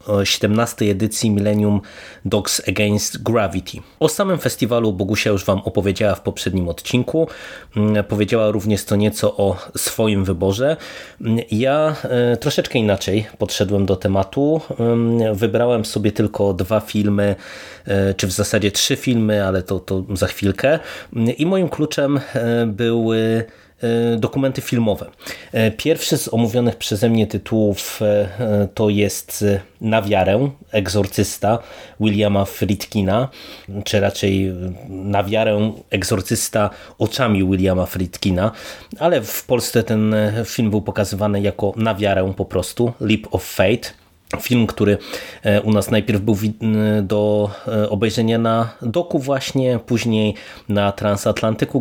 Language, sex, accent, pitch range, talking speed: Polish, male, native, 100-115 Hz, 115 wpm